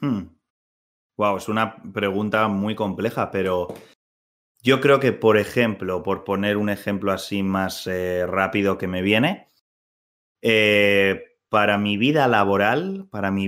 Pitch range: 100-130 Hz